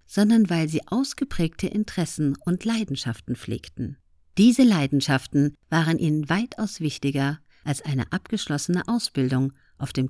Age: 50-69